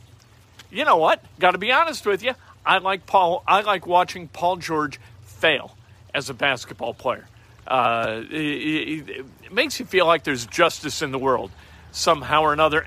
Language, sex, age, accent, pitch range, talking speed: English, male, 50-69, American, 150-200 Hz, 175 wpm